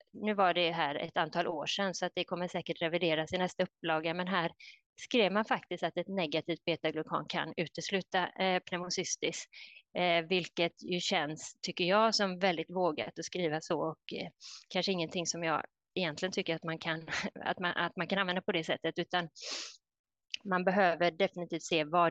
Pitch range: 160-185 Hz